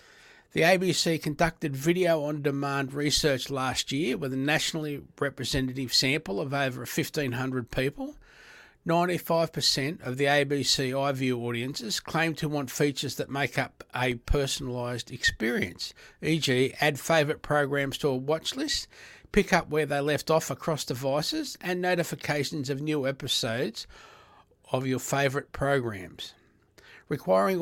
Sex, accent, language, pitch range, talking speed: male, Australian, English, 135-165 Hz, 125 wpm